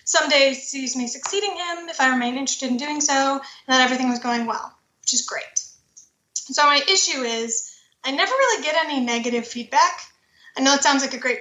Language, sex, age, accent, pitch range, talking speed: English, female, 30-49, American, 250-295 Hz, 210 wpm